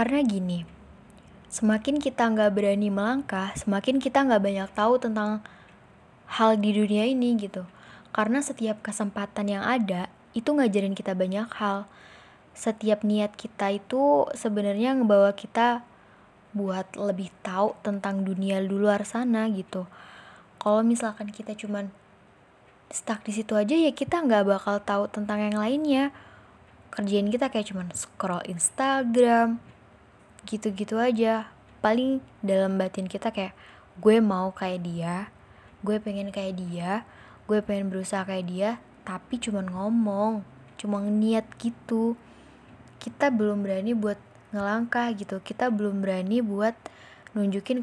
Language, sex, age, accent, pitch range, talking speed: Indonesian, female, 10-29, native, 195-230 Hz, 130 wpm